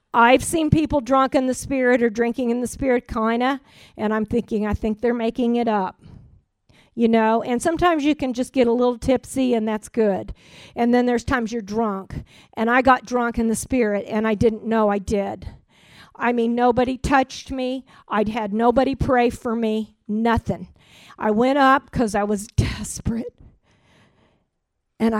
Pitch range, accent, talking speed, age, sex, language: 220-260 Hz, American, 180 wpm, 50-69, female, English